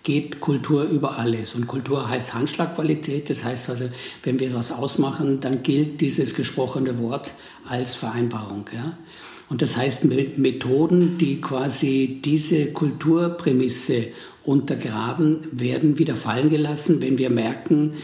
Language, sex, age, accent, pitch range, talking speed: German, male, 60-79, German, 125-150 Hz, 130 wpm